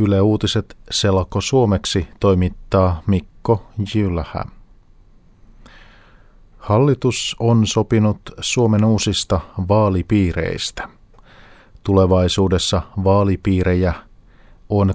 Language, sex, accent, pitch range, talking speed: Finnish, male, native, 90-105 Hz, 65 wpm